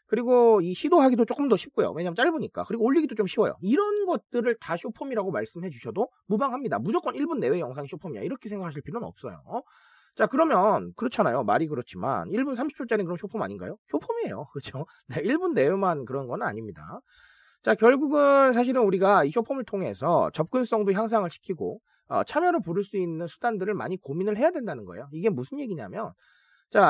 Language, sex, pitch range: Korean, male, 185-270 Hz